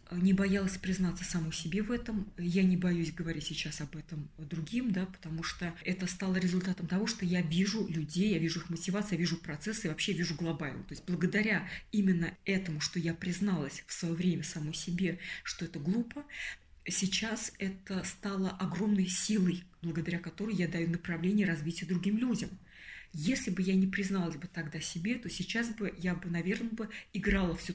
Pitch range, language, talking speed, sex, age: 175-205 Hz, Russian, 180 wpm, female, 20-39